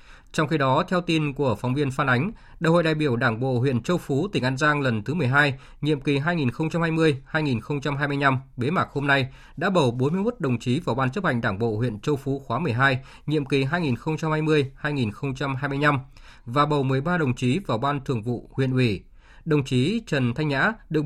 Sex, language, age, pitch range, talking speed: male, Vietnamese, 20-39, 130-155 Hz, 195 wpm